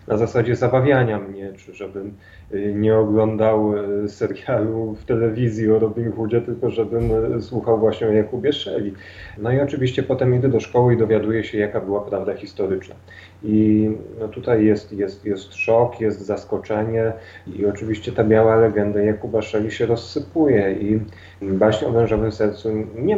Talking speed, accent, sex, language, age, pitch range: 155 wpm, native, male, Polish, 30-49, 105-125 Hz